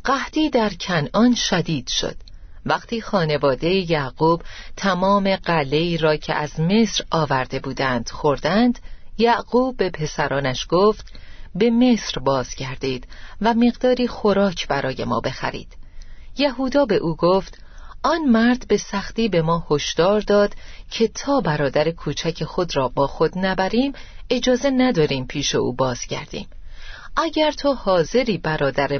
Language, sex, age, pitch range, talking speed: Persian, female, 30-49, 155-240 Hz, 125 wpm